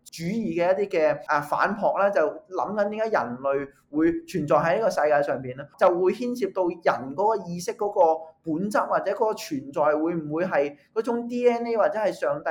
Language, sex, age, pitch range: Chinese, male, 20-39, 165-230 Hz